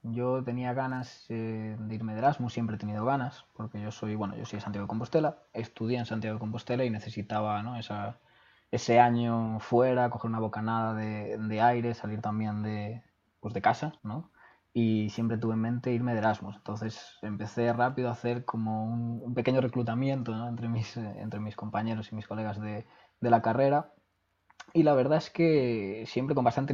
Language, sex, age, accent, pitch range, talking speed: Spanish, male, 20-39, Spanish, 105-120 Hz, 190 wpm